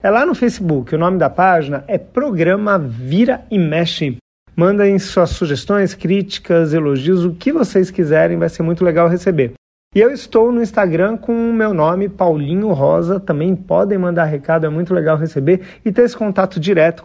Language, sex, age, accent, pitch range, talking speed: Portuguese, male, 40-59, Brazilian, 160-200 Hz, 180 wpm